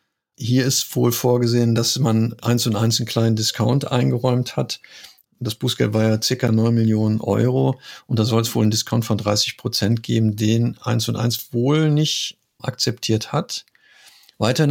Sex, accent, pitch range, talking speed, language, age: male, German, 110-130 Hz, 170 wpm, German, 50-69